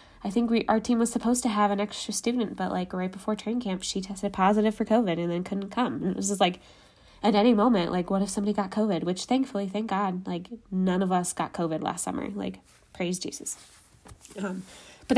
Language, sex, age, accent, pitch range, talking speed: English, female, 10-29, American, 180-215 Hz, 230 wpm